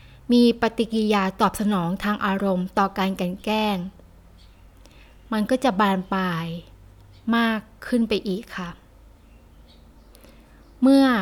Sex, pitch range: female, 185-230 Hz